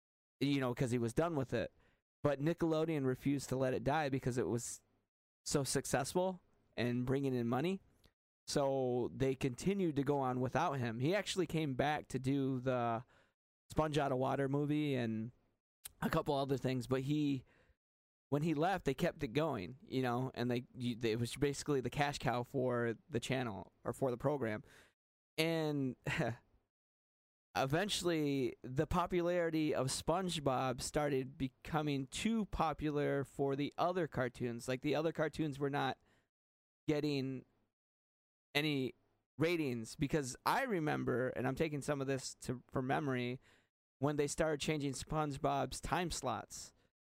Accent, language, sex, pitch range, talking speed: American, English, male, 125-155 Hz, 150 wpm